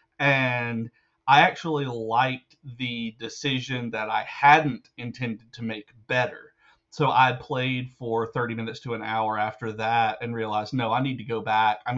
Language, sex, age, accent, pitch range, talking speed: English, male, 40-59, American, 115-140 Hz, 165 wpm